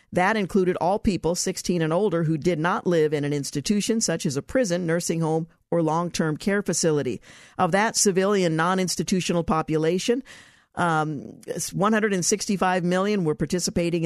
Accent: American